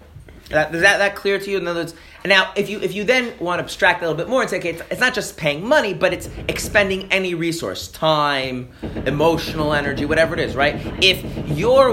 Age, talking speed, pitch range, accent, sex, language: 30-49, 225 wpm, 110-170 Hz, American, male, English